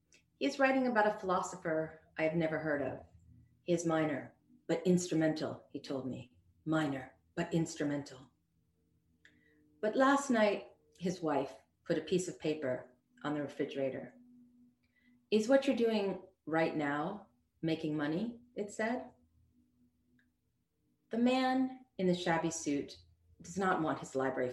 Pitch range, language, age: 105-175 Hz, Turkish, 30-49